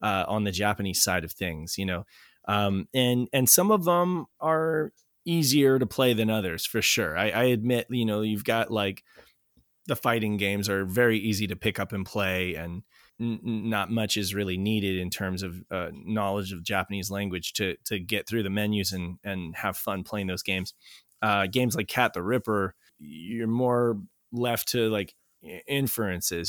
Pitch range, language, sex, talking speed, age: 90-110 Hz, English, male, 185 wpm, 20-39